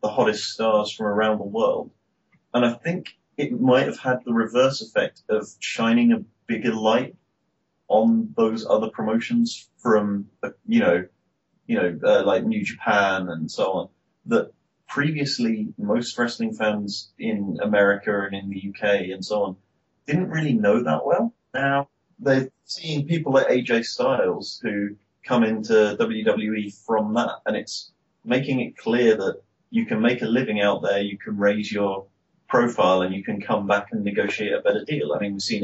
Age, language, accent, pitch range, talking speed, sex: 30-49, English, British, 100-140 Hz, 170 wpm, male